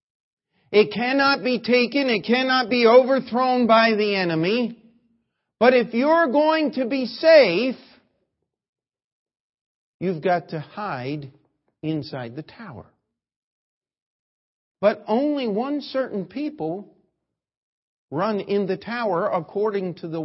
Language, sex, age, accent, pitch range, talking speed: English, male, 50-69, American, 165-235 Hz, 110 wpm